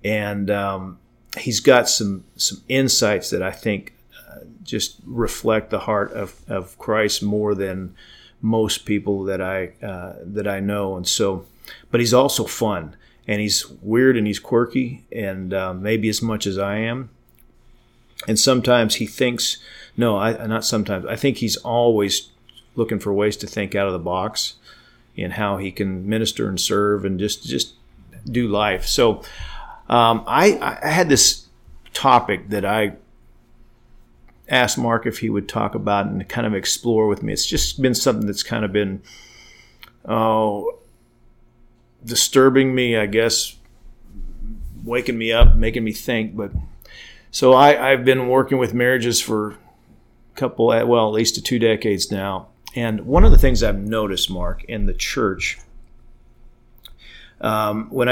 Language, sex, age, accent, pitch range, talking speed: English, male, 40-59, American, 100-120 Hz, 155 wpm